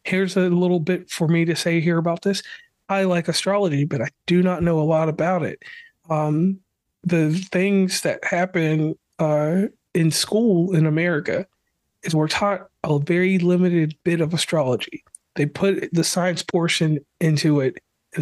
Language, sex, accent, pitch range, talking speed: English, male, American, 155-185 Hz, 165 wpm